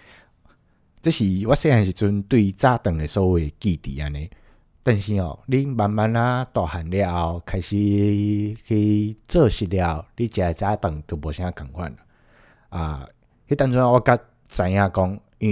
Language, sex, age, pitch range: Chinese, male, 20-39, 90-110 Hz